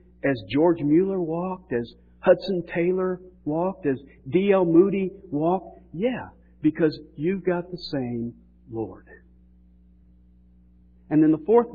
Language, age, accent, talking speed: English, 50-69, American, 115 wpm